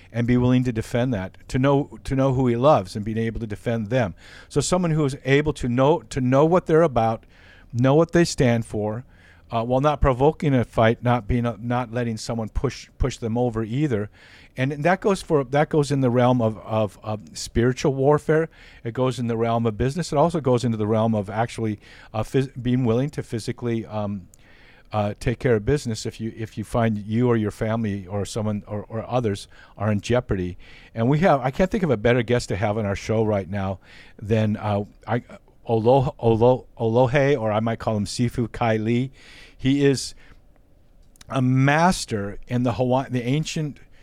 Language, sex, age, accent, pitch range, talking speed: English, male, 50-69, American, 105-130 Hz, 205 wpm